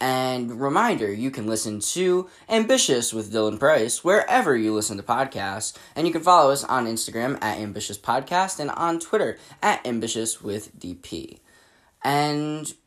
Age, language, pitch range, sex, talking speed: 10-29, English, 105-130 Hz, male, 155 wpm